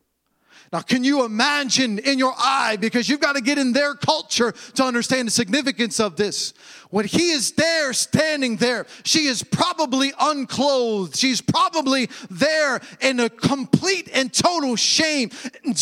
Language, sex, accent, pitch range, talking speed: English, male, American, 230-305 Hz, 155 wpm